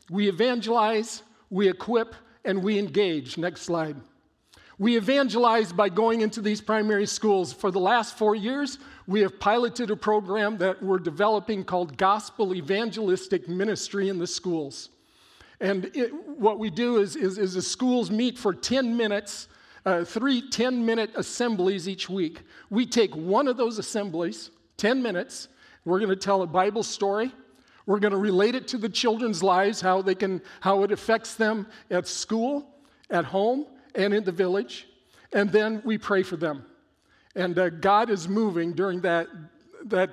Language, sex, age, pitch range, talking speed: English, male, 50-69, 185-225 Hz, 160 wpm